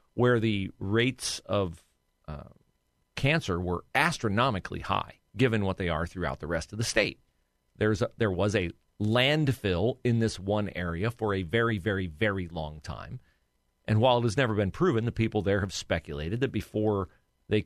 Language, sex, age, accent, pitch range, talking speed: English, male, 40-59, American, 90-115 Hz, 175 wpm